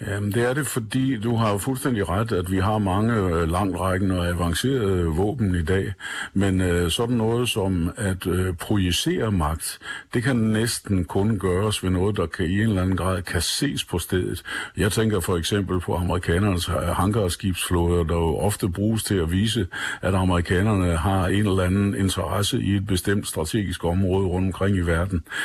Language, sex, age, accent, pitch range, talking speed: Danish, male, 60-79, native, 85-105 Hz, 180 wpm